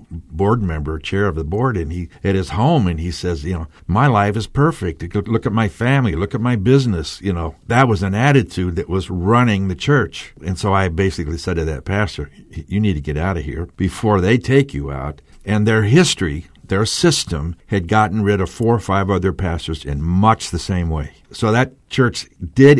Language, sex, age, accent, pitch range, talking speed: English, male, 60-79, American, 80-110 Hz, 220 wpm